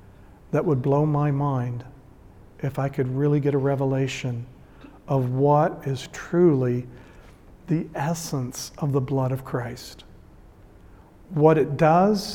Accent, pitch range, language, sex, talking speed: American, 130-165 Hz, English, male, 125 wpm